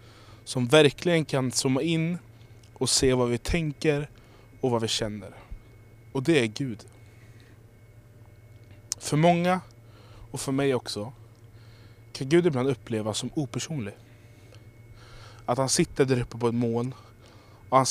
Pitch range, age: 110-125 Hz, 20-39